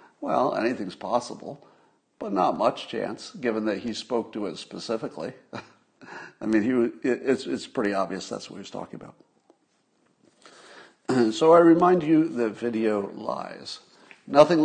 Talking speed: 135 wpm